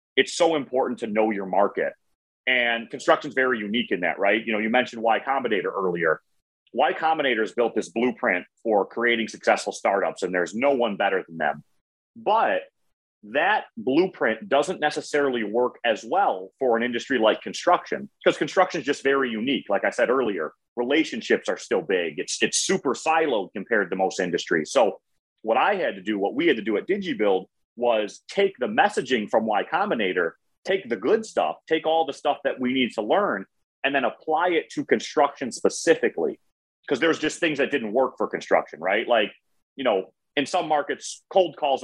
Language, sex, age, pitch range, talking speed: English, male, 30-49, 115-160 Hz, 190 wpm